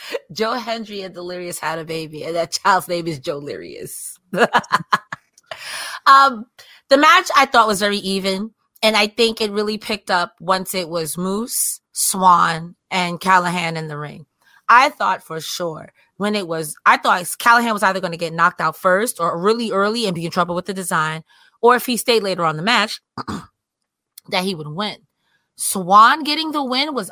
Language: English